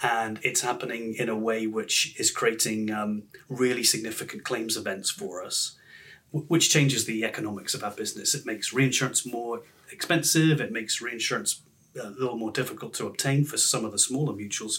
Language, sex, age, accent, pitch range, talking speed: English, male, 30-49, British, 110-145 Hz, 175 wpm